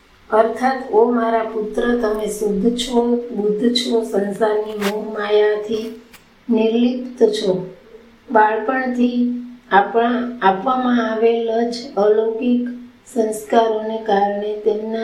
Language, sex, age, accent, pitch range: Gujarati, female, 20-39, native, 210-235 Hz